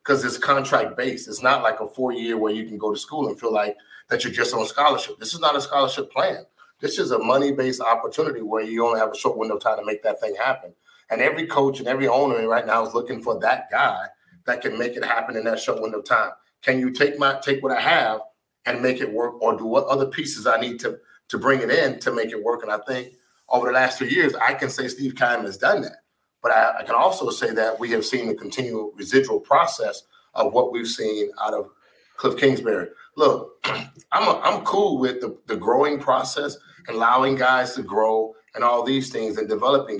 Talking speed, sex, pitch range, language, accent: 245 wpm, male, 120-140 Hz, English, American